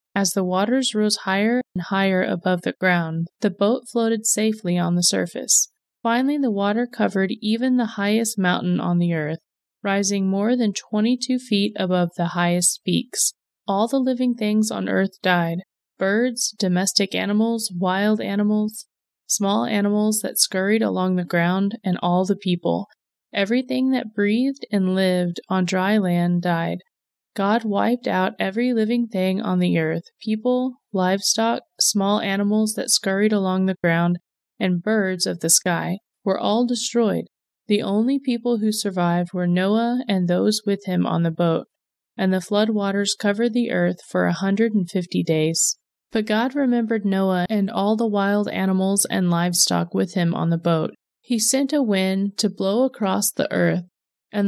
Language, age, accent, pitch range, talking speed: English, 20-39, American, 180-220 Hz, 160 wpm